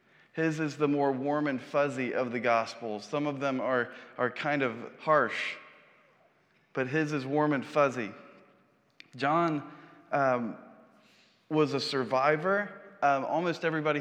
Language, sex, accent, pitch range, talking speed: English, male, American, 130-155 Hz, 135 wpm